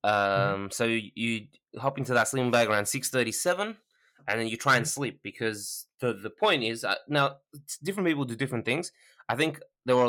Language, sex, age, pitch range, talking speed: English, male, 20-39, 105-135 Hz, 195 wpm